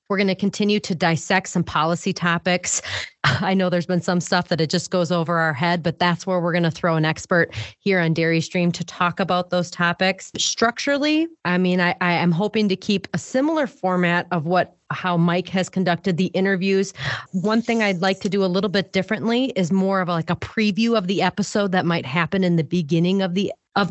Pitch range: 170-195 Hz